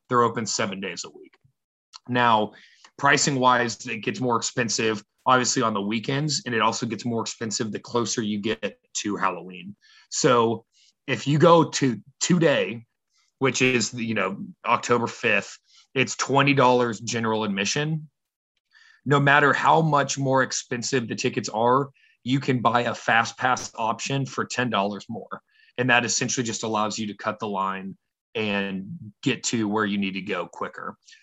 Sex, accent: male, American